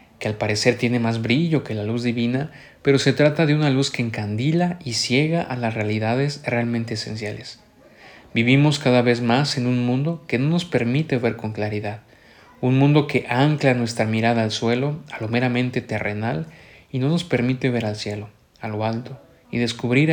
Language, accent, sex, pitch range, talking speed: Spanish, Mexican, male, 115-135 Hz, 190 wpm